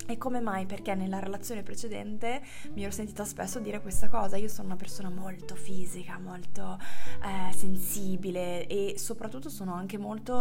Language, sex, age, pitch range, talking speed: Italian, female, 20-39, 190-225 Hz, 160 wpm